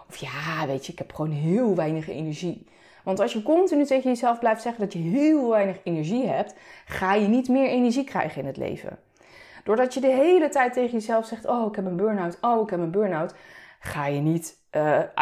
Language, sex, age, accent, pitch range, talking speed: Dutch, female, 30-49, Dutch, 185-270 Hz, 215 wpm